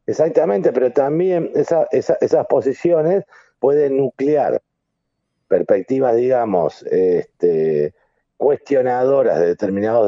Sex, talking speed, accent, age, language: male, 90 wpm, Argentinian, 50-69, English